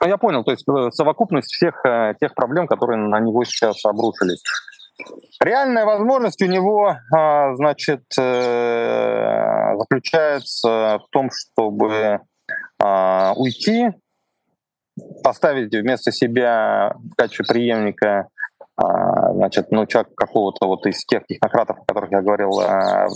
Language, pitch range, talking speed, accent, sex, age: Russian, 105-150 Hz, 105 wpm, native, male, 30-49